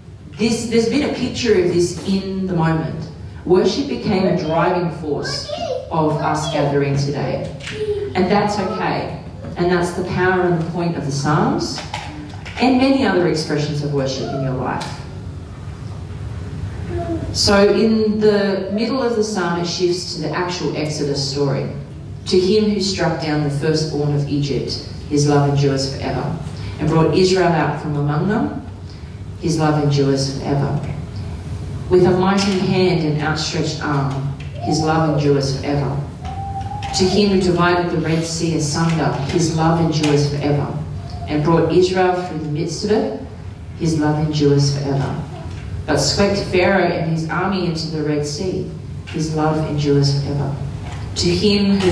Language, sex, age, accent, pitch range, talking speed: English, female, 40-59, Australian, 140-180 Hz, 150 wpm